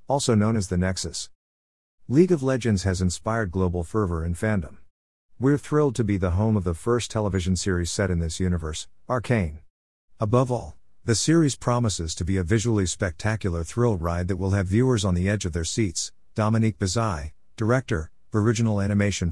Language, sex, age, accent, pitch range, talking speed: English, male, 50-69, American, 90-115 Hz, 175 wpm